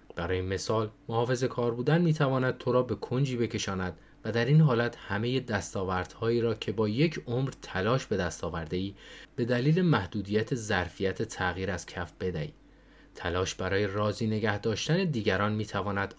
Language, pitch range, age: Persian, 95-125 Hz, 30-49